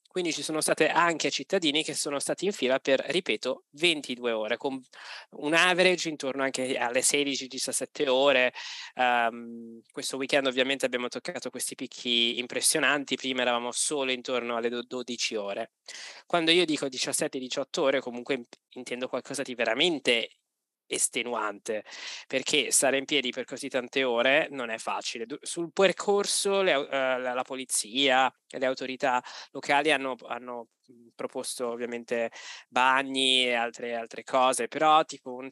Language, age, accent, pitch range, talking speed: Italian, 20-39, native, 120-145 Hz, 140 wpm